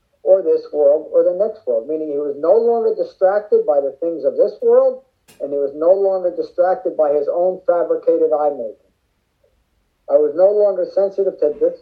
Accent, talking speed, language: American, 195 wpm, English